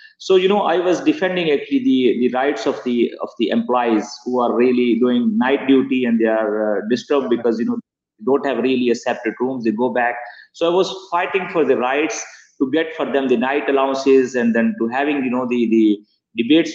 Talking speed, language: 220 wpm, English